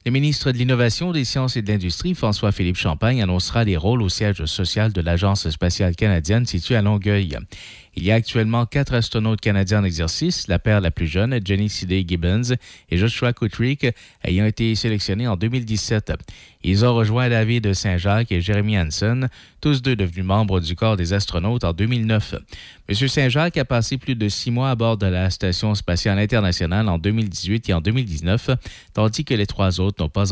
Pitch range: 95-120 Hz